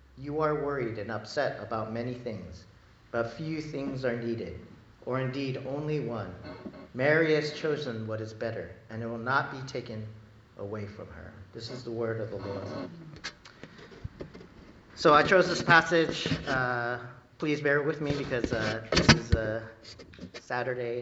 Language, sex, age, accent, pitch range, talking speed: English, male, 40-59, American, 110-150 Hz, 155 wpm